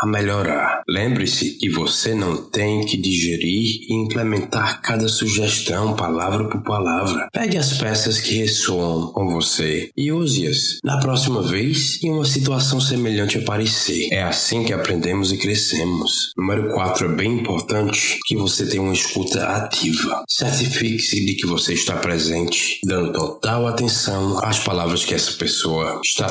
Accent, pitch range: Brazilian, 85-115 Hz